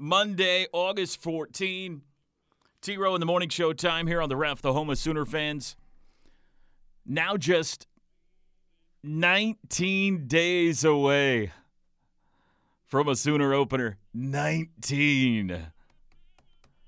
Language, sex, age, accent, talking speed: English, male, 40-59, American, 100 wpm